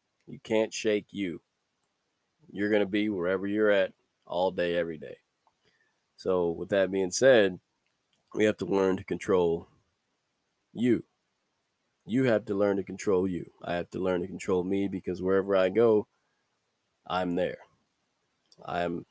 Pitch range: 90-105 Hz